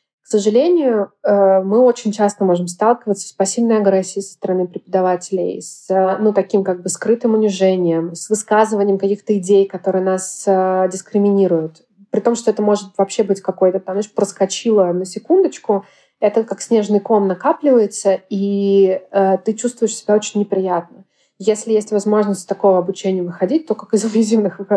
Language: Russian